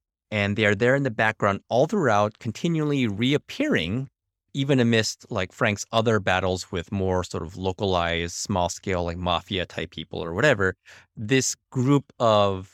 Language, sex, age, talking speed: English, male, 30-49, 155 wpm